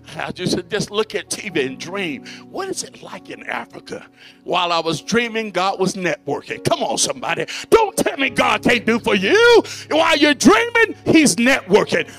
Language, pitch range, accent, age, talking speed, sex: English, 235-290 Hz, American, 60-79, 180 wpm, male